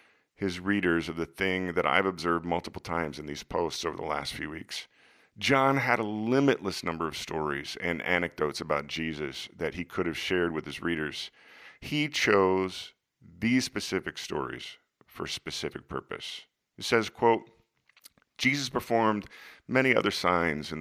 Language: English